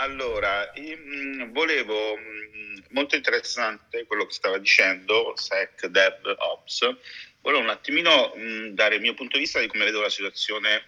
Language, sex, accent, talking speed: Italian, male, native, 140 wpm